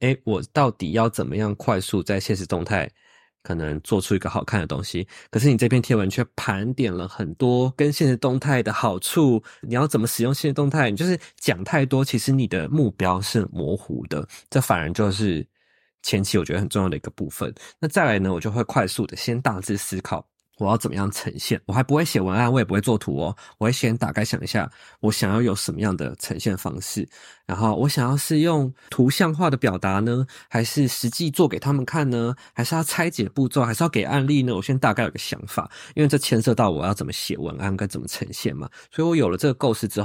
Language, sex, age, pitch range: Chinese, male, 20-39, 100-130 Hz